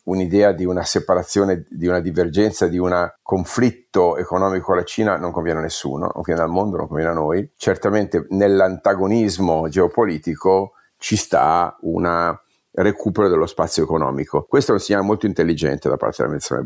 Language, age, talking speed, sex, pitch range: Italian, 50-69, 160 wpm, male, 90-105 Hz